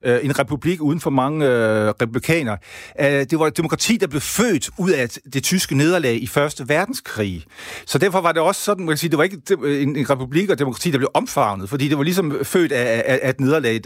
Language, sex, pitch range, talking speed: Danish, male, 110-145 Hz, 220 wpm